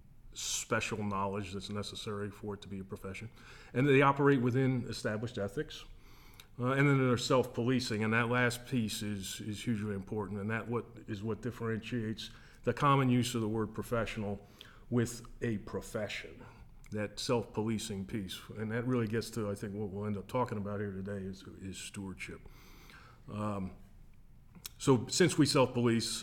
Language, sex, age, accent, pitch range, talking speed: English, male, 40-59, American, 105-120 Hz, 160 wpm